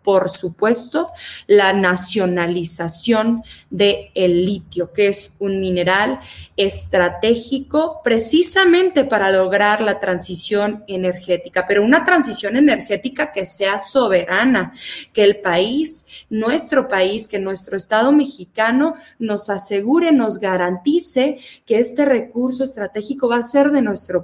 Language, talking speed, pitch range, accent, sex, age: Spanish, 115 wpm, 190-275 Hz, Mexican, female, 20-39